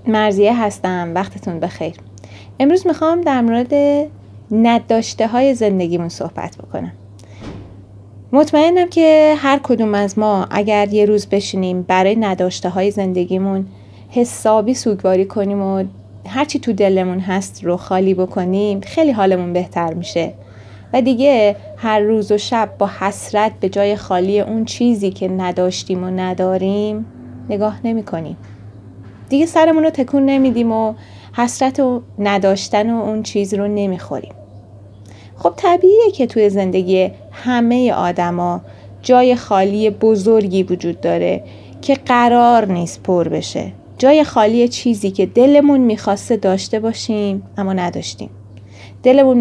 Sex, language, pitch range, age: female, Arabic, 175-230 Hz, 30-49